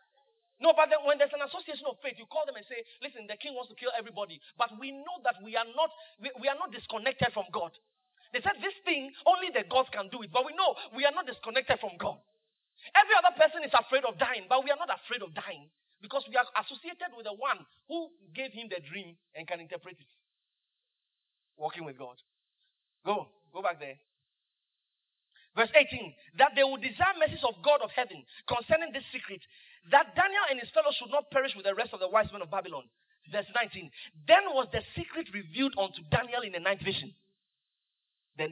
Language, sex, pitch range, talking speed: English, male, 205-310 Hz, 210 wpm